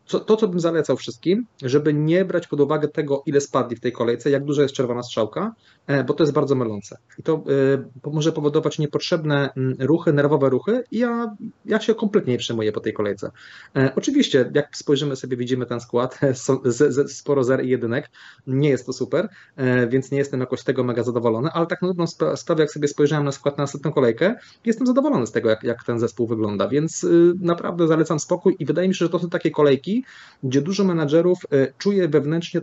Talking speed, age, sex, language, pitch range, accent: 195 wpm, 30-49, male, Polish, 130-165 Hz, native